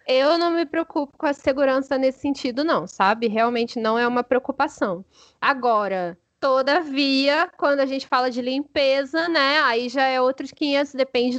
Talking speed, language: 165 wpm, Portuguese